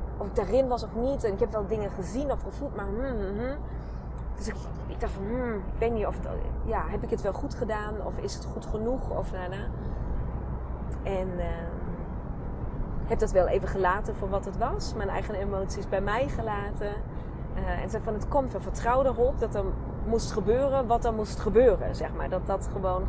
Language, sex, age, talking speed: Dutch, female, 20-39, 205 wpm